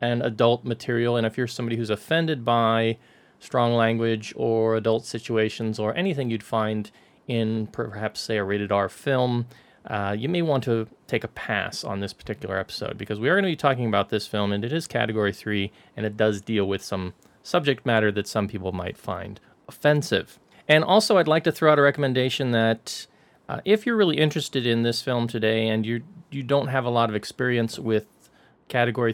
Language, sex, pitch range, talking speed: English, male, 105-125 Hz, 200 wpm